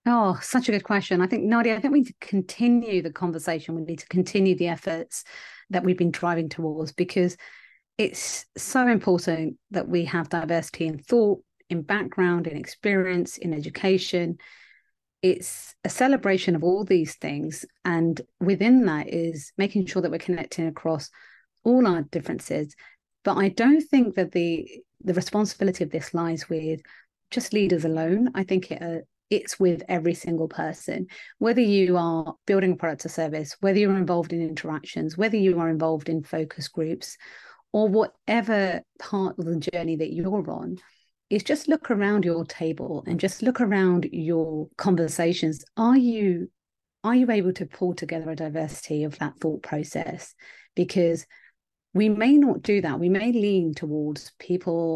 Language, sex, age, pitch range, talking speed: English, female, 30-49, 165-200 Hz, 165 wpm